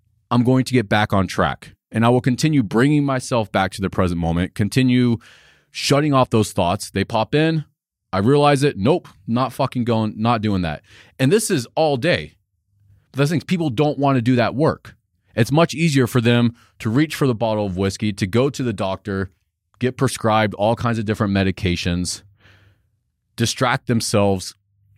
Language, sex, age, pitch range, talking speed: English, male, 30-49, 100-135 Hz, 185 wpm